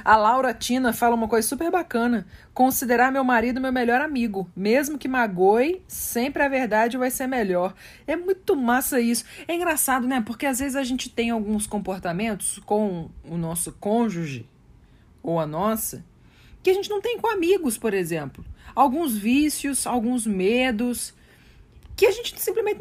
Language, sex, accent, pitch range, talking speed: Portuguese, female, Brazilian, 210-305 Hz, 165 wpm